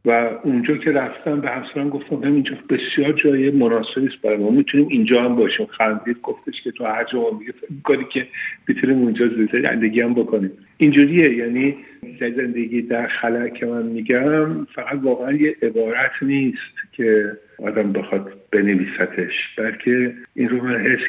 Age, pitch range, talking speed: 50-69, 105-130 Hz, 155 wpm